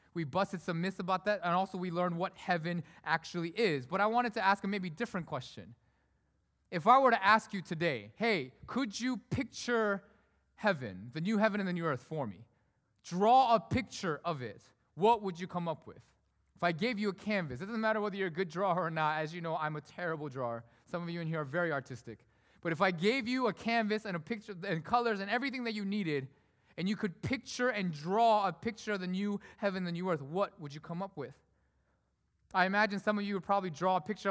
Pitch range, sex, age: 165-210 Hz, male, 20-39